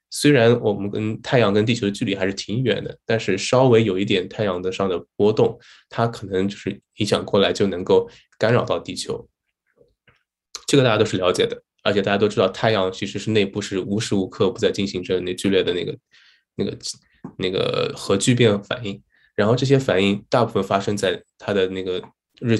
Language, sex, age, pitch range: Chinese, male, 20-39, 95-125 Hz